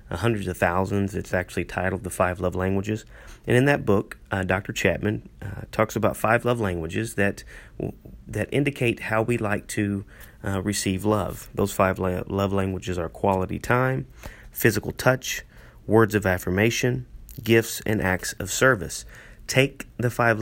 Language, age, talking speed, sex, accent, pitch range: English, 30-49, 160 wpm, male, American, 95-110 Hz